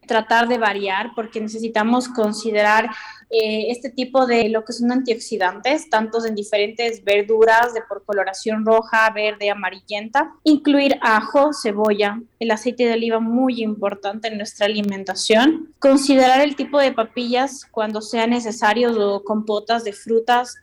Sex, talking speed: female, 140 wpm